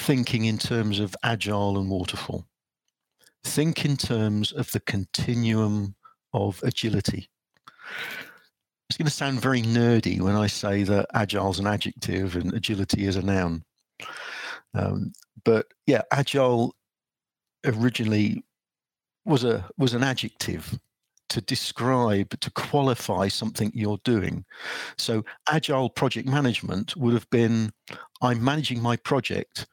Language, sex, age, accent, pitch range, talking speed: English, male, 50-69, British, 105-135 Hz, 125 wpm